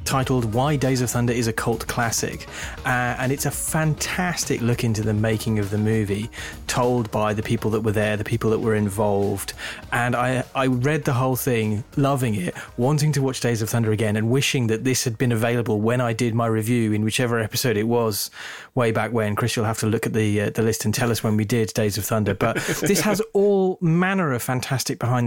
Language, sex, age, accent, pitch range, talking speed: English, male, 30-49, British, 110-125 Hz, 230 wpm